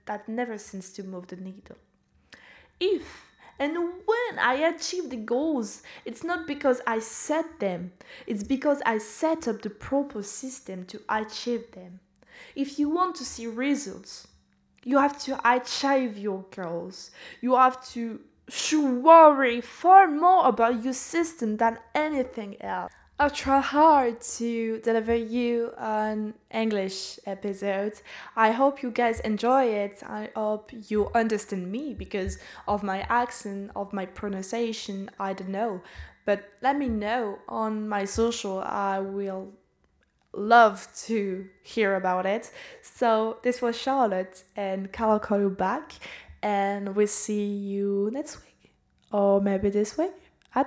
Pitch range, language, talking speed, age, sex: 200-270 Hz, French, 140 wpm, 10-29, female